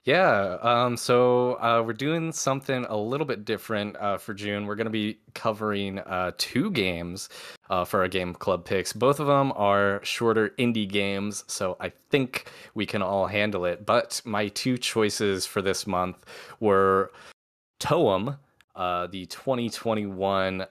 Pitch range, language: 95-110 Hz, English